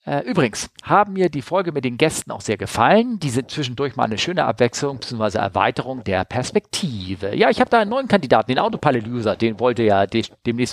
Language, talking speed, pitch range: German, 200 wpm, 115-160 Hz